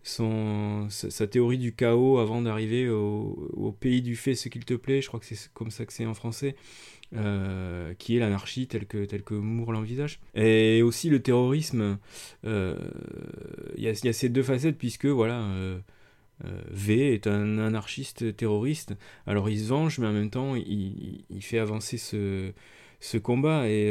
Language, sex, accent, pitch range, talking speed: French, male, French, 105-130 Hz, 185 wpm